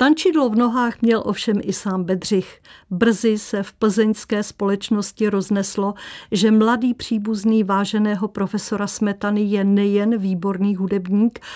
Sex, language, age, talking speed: female, Czech, 50-69, 125 wpm